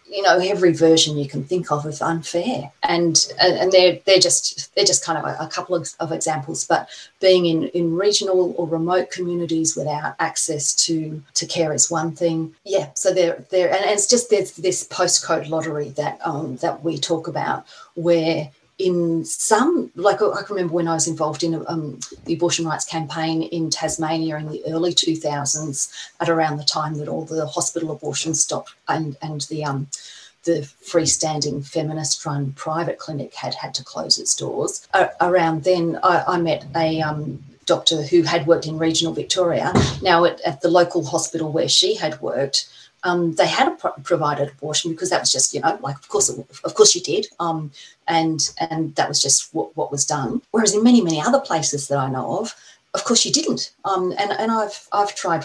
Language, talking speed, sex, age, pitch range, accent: English, 195 wpm, female, 40-59, 150-175 Hz, Australian